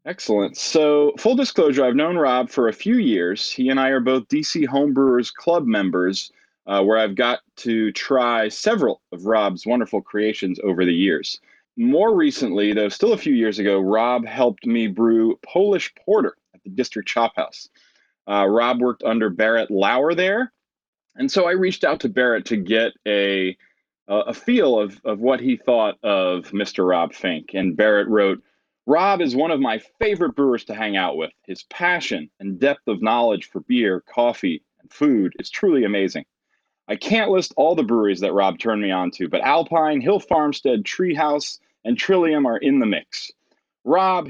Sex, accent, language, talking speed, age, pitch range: male, American, English, 180 wpm, 30-49, 110-185 Hz